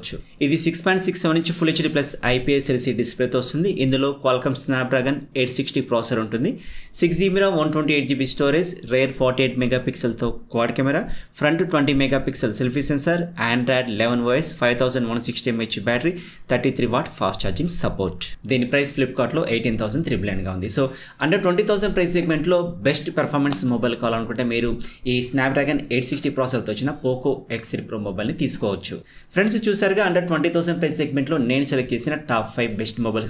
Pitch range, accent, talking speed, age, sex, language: 120-160 Hz, native, 170 wpm, 20-39, male, Telugu